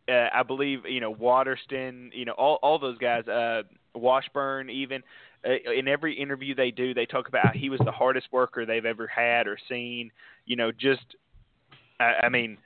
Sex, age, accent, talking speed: male, 20-39, American, 195 wpm